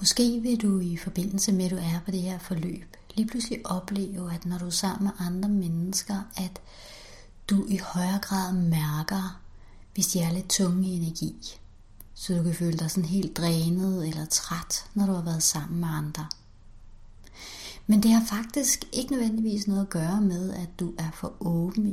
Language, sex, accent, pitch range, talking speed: Danish, female, native, 170-205 Hz, 190 wpm